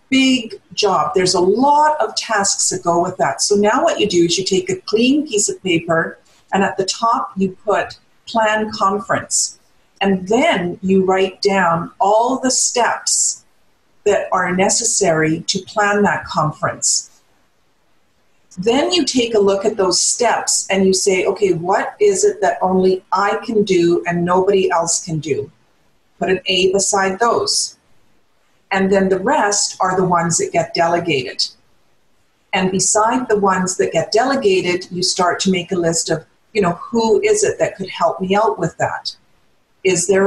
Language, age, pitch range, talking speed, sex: English, 50-69, 175-215 Hz, 170 wpm, female